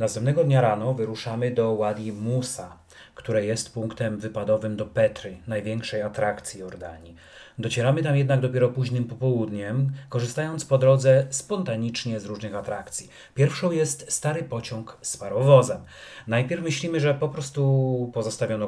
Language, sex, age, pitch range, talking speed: Polish, male, 30-49, 110-135 Hz, 130 wpm